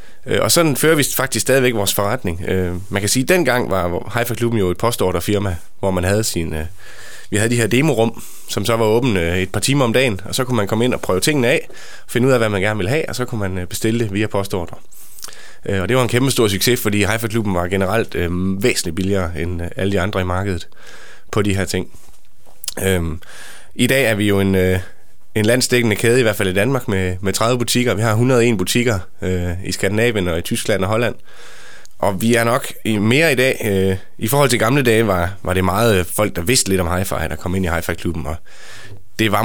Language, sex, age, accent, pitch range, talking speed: Danish, male, 20-39, native, 95-120 Hz, 225 wpm